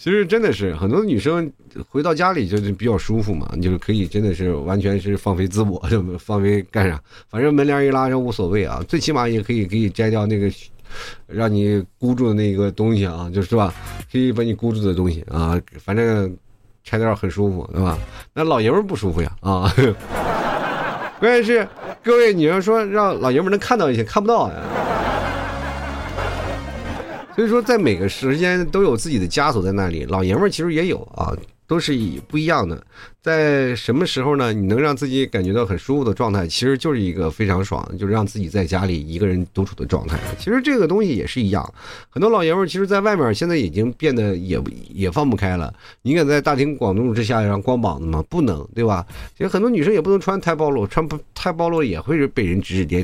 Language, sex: Chinese, male